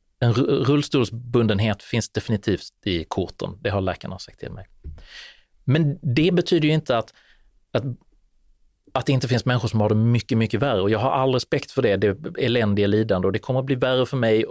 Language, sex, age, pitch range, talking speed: Swedish, male, 30-49, 105-140 Hz, 205 wpm